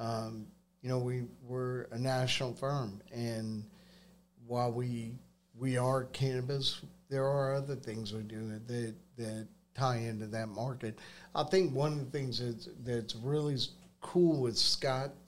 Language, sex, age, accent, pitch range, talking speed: English, male, 50-69, American, 120-140 Hz, 155 wpm